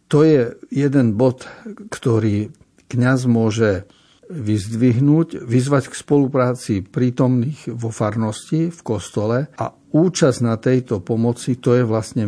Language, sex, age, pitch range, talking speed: Slovak, male, 60-79, 110-130 Hz, 115 wpm